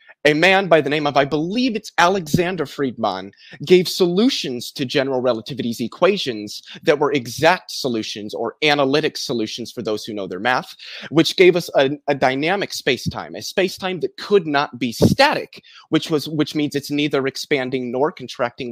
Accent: American